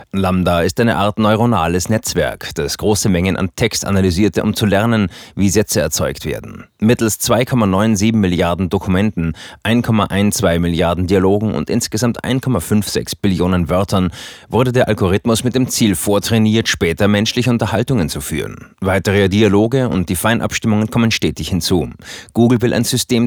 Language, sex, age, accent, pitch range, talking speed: German, male, 30-49, German, 95-115 Hz, 140 wpm